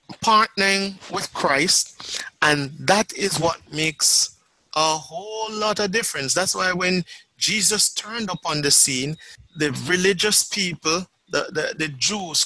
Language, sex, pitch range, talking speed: English, male, 145-215 Hz, 135 wpm